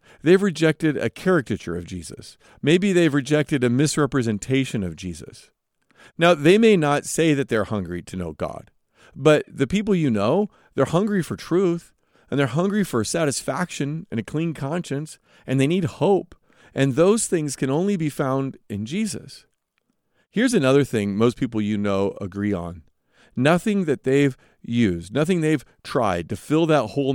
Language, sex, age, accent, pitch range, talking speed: English, male, 40-59, American, 105-150 Hz, 165 wpm